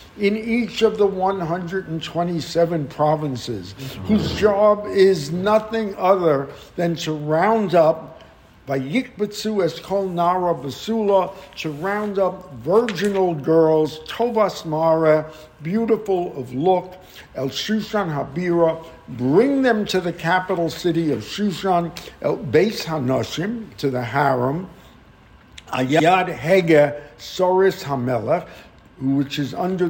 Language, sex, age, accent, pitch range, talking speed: English, male, 60-79, American, 140-190 Hz, 105 wpm